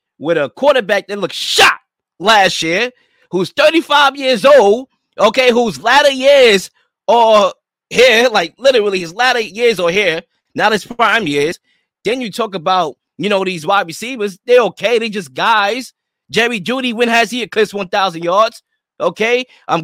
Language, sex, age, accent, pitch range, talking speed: English, male, 20-39, American, 175-240 Hz, 160 wpm